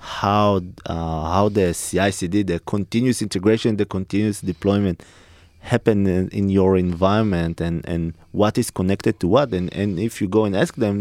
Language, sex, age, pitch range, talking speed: English, male, 20-39, 85-105 Hz, 175 wpm